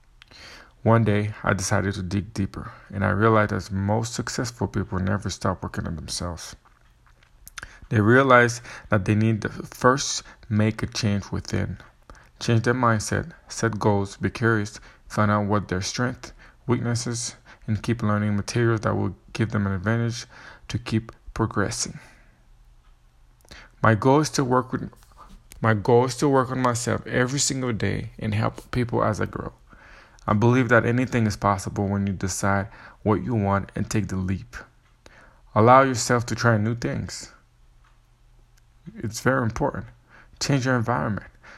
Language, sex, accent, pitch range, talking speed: English, male, American, 105-120 Hz, 155 wpm